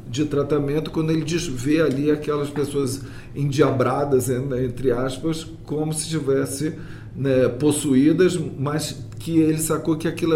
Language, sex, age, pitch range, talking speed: Portuguese, male, 40-59, 130-160 Hz, 140 wpm